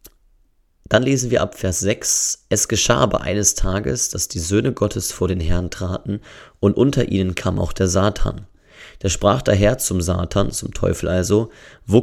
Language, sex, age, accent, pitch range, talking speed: German, male, 30-49, German, 95-110 Hz, 180 wpm